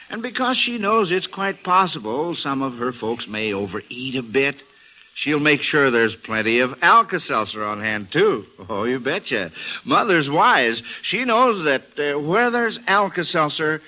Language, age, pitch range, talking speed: English, 60-79, 125-190 Hz, 160 wpm